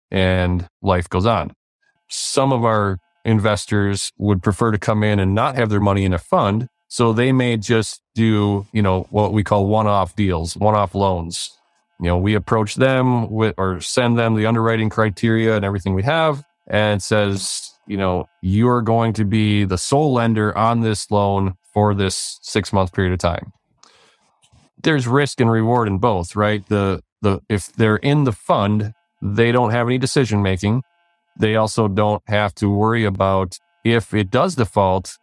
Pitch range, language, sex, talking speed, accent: 100-120 Hz, English, male, 175 wpm, American